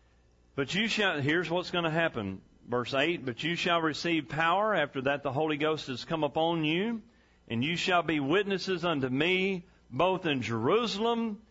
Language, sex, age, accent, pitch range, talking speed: English, male, 40-59, American, 125-200 Hz, 175 wpm